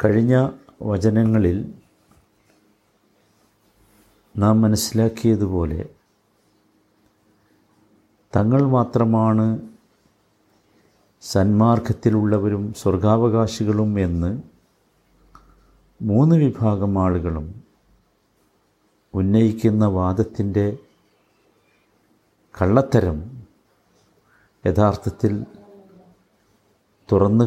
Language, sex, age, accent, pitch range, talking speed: Malayalam, male, 50-69, native, 95-115 Hz, 35 wpm